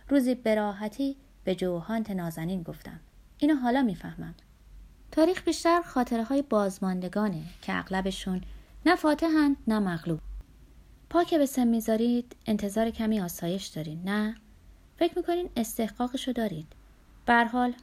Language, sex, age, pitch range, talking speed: Persian, female, 30-49, 185-255 Hz, 110 wpm